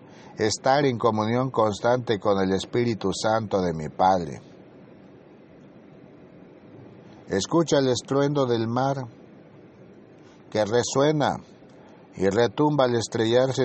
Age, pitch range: 60-79, 115-145 Hz